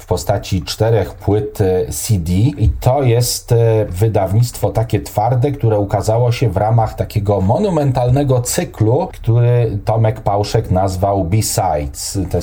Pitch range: 100-120 Hz